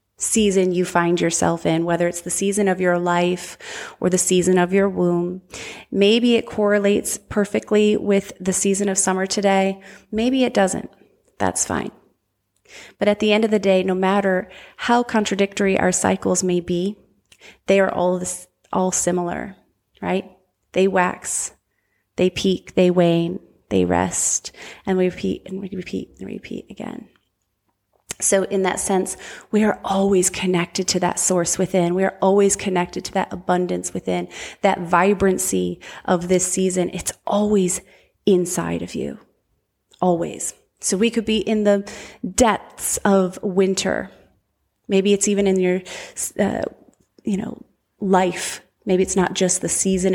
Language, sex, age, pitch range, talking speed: English, female, 30-49, 180-200 Hz, 150 wpm